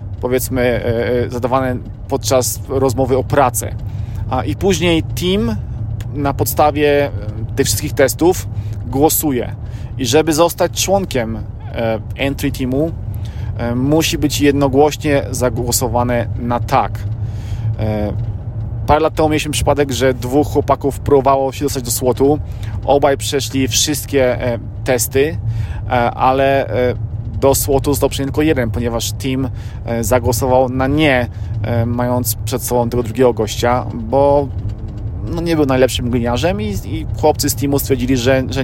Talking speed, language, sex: 110 wpm, Polish, male